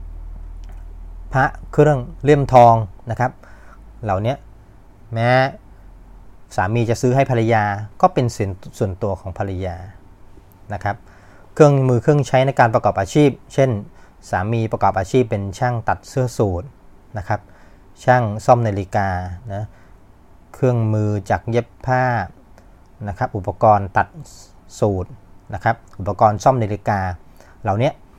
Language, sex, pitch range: English, male, 95-120 Hz